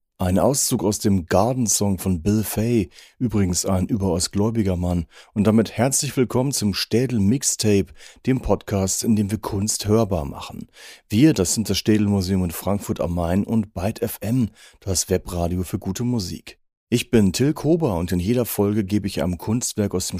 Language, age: German, 40-59